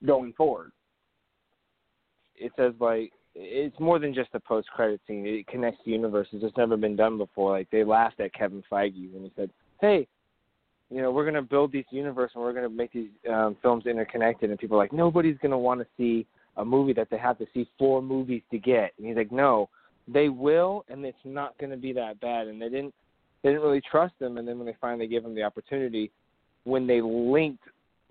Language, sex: English, male